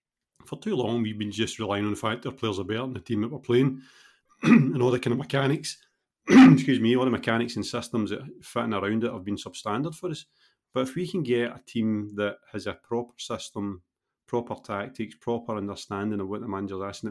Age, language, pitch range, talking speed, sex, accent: 30-49, English, 100-125 Hz, 225 wpm, male, British